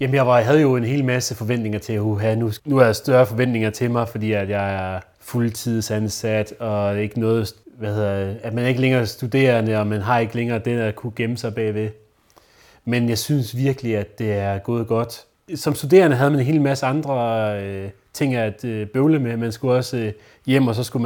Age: 30-49